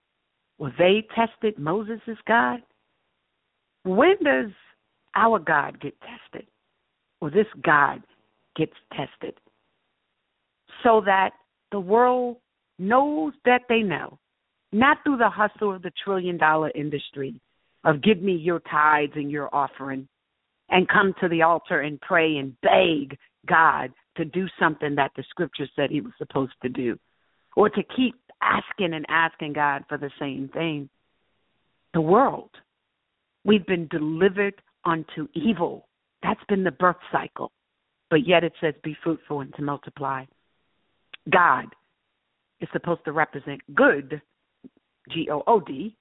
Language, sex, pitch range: English, female, 145-200 Hz